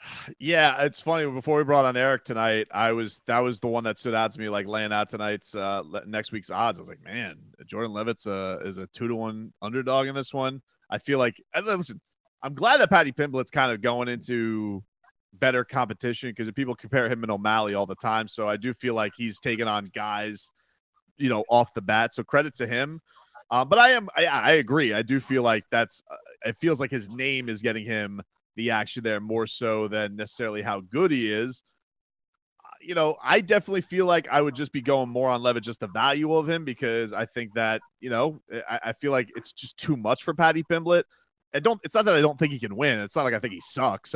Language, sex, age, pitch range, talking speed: English, male, 30-49, 110-155 Hz, 230 wpm